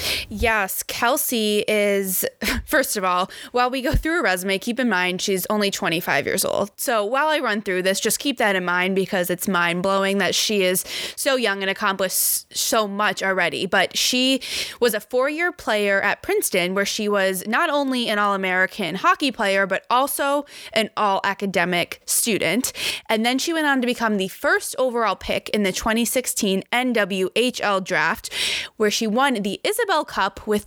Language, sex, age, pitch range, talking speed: English, female, 20-39, 190-245 Hz, 175 wpm